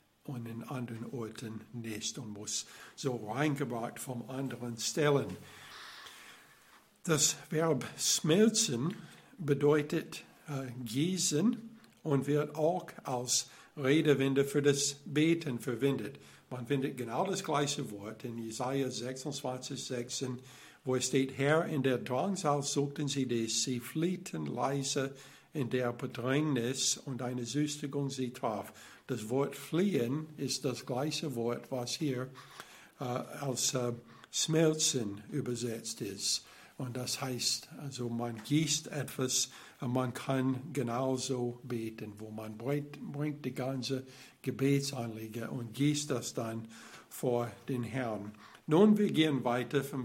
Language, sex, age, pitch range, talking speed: German, male, 60-79, 125-150 Hz, 125 wpm